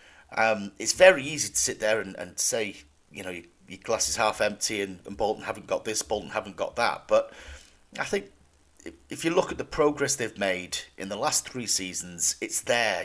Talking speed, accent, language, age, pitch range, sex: 215 wpm, British, English, 40-59, 95-145 Hz, male